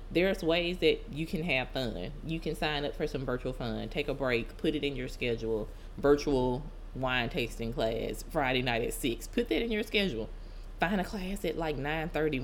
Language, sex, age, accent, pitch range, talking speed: English, female, 20-39, American, 120-170 Hz, 205 wpm